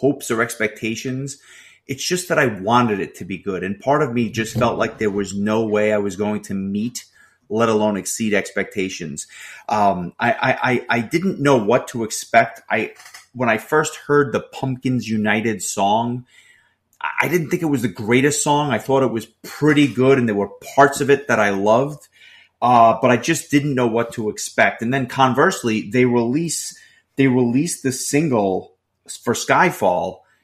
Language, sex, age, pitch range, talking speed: English, male, 30-49, 110-140 Hz, 185 wpm